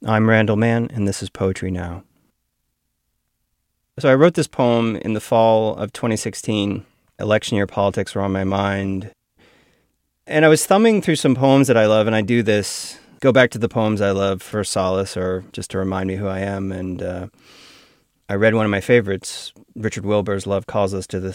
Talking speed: 200 wpm